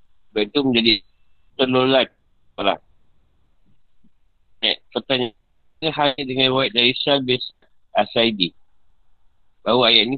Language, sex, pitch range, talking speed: Malay, male, 95-130 Hz, 85 wpm